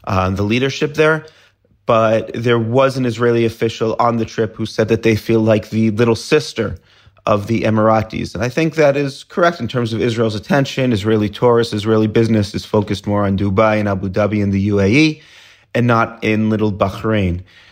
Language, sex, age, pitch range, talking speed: English, male, 30-49, 105-125 Hz, 190 wpm